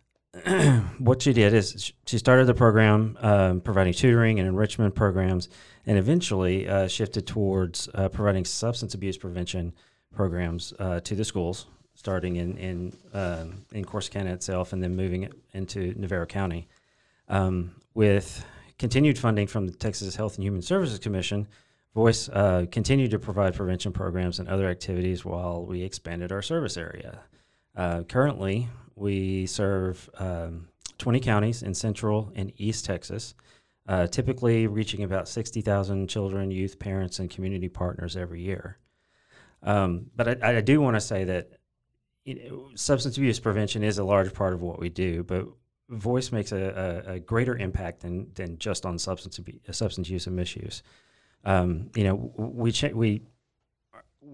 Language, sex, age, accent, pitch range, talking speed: English, male, 40-59, American, 90-110 Hz, 155 wpm